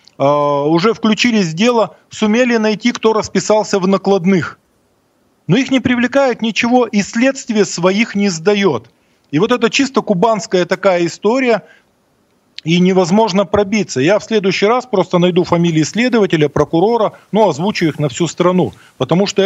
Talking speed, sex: 145 wpm, male